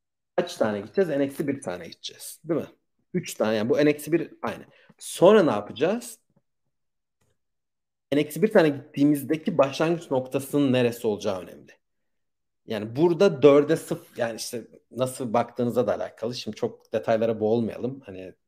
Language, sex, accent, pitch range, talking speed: Turkish, male, native, 110-140 Hz, 140 wpm